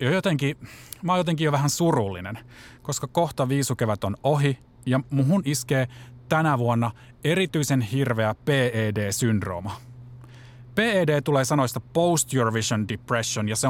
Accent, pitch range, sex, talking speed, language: native, 115-150 Hz, male, 125 wpm, Finnish